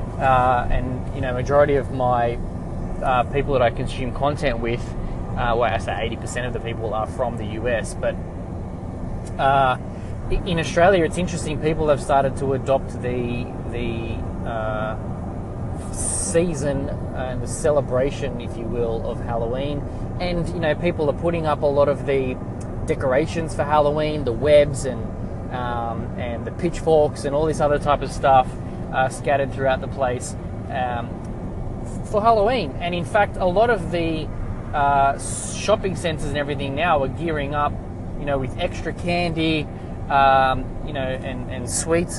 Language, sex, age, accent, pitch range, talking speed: English, male, 20-39, Australian, 115-145 Hz, 160 wpm